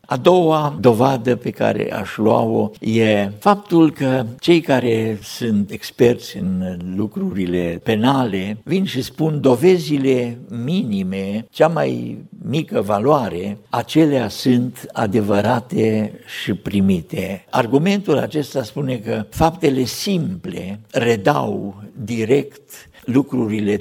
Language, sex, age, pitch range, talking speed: Romanian, male, 60-79, 105-145 Hz, 100 wpm